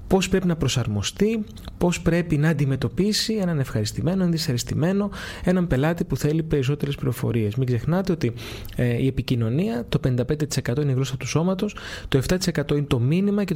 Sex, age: male, 20-39